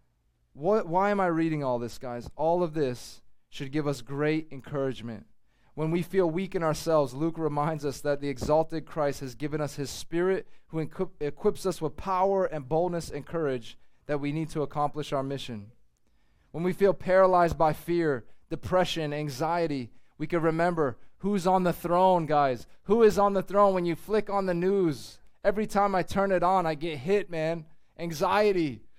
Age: 30-49